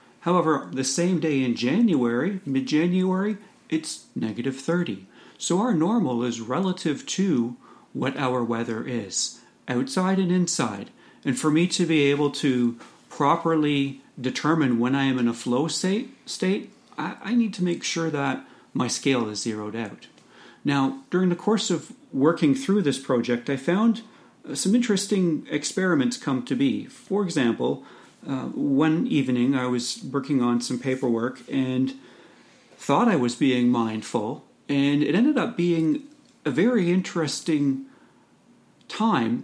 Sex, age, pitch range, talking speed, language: male, 40-59, 125-175 Hz, 140 wpm, English